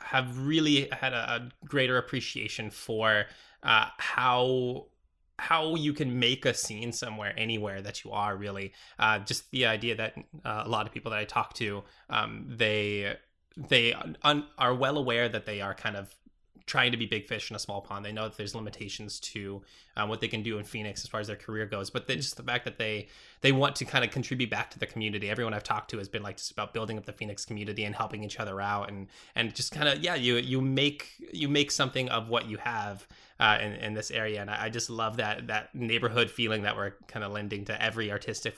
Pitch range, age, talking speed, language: 105-125 Hz, 20-39, 230 wpm, English